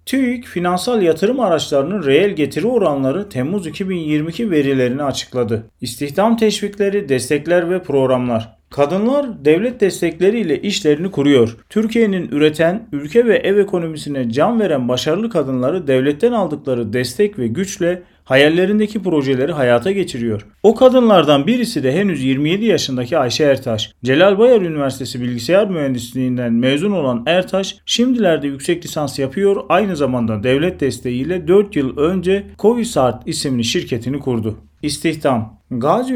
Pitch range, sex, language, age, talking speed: 130-195 Hz, male, Turkish, 40-59, 125 wpm